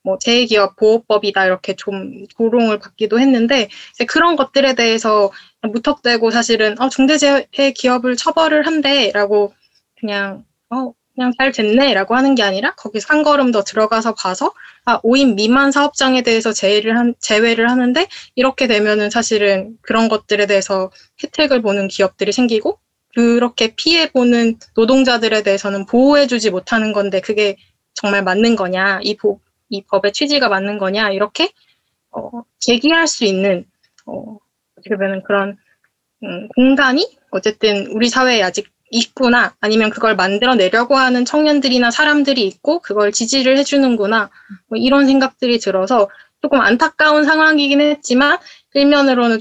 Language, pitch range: Korean, 205-265 Hz